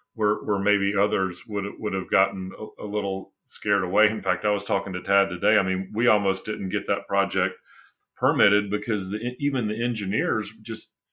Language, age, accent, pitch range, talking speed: English, 40-59, American, 95-110 Hz, 190 wpm